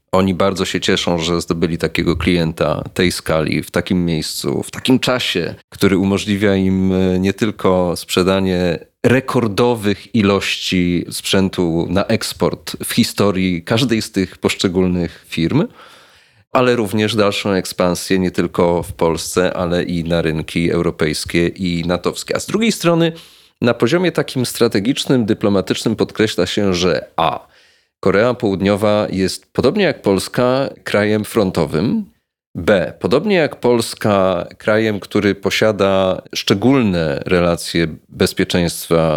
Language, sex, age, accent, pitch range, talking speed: Polish, male, 30-49, native, 90-115 Hz, 125 wpm